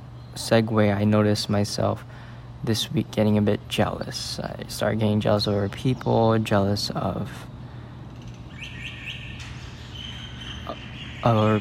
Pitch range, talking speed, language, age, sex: 105-120 Hz, 100 wpm, English, 20-39, male